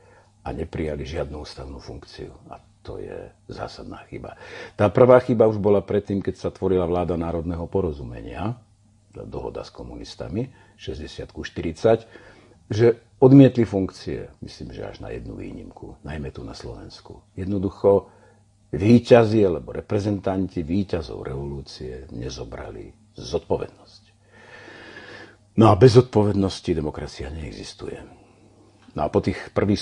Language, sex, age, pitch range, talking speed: Slovak, male, 50-69, 85-105 Hz, 120 wpm